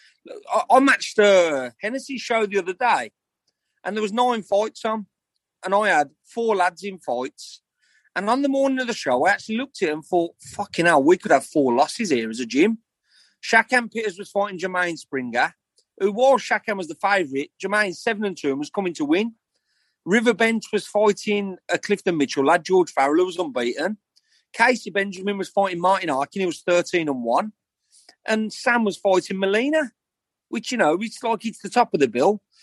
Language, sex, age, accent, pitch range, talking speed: English, male, 40-59, British, 185-250 Hz, 195 wpm